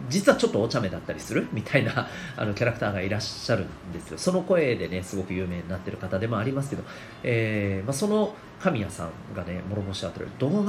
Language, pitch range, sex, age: Japanese, 100-140 Hz, male, 40-59